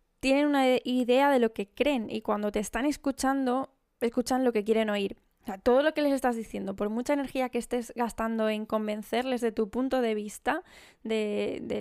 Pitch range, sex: 220-255 Hz, female